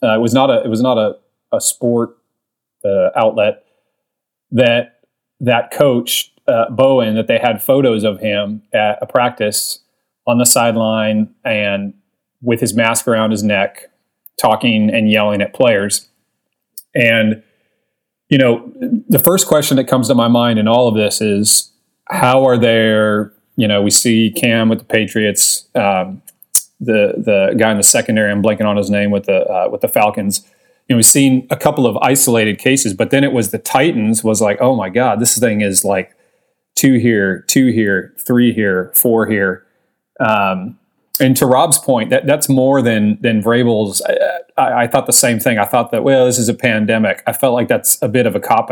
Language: English